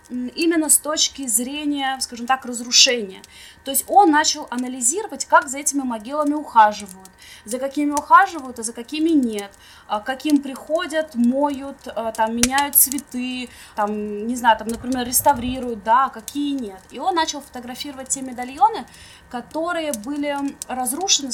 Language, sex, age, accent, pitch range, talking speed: Russian, female, 20-39, native, 245-285 Hz, 140 wpm